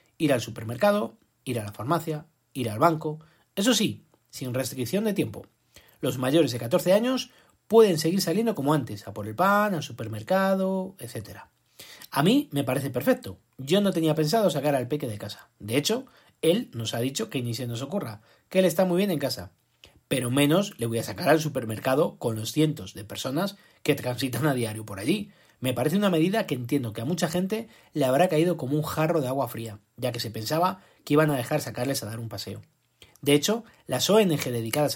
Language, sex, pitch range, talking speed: Spanish, male, 120-180 Hz, 210 wpm